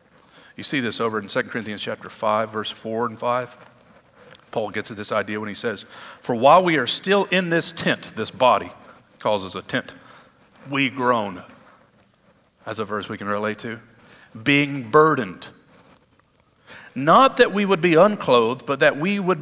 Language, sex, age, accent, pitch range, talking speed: English, male, 50-69, American, 125-175 Hz, 175 wpm